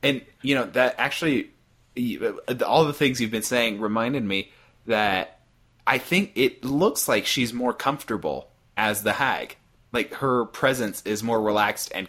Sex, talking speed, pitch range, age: male, 160 wpm, 105-125 Hz, 20-39